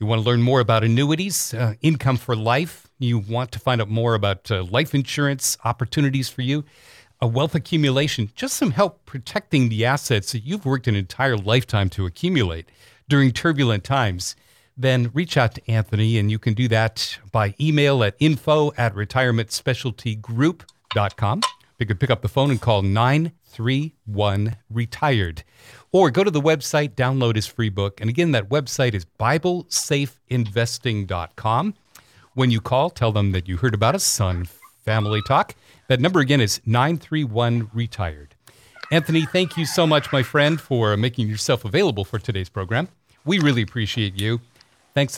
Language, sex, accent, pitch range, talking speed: English, male, American, 110-145 Hz, 160 wpm